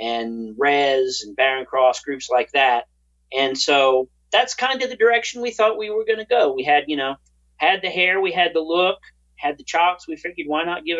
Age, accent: 40-59, American